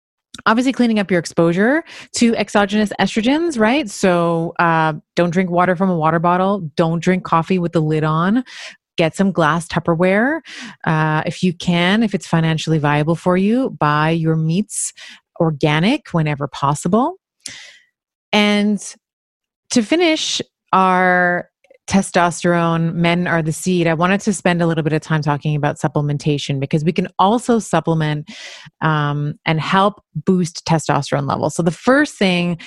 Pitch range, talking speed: 155-195 Hz, 150 wpm